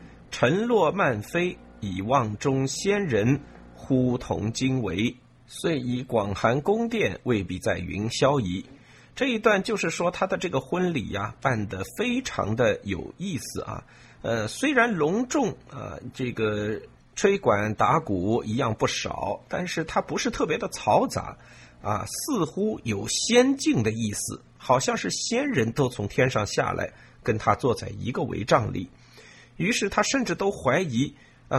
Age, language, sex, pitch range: 50-69, Chinese, male, 110-150 Hz